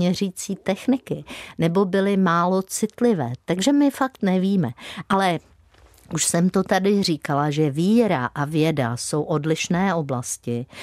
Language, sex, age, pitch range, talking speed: Czech, female, 50-69, 145-220 Hz, 130 wpm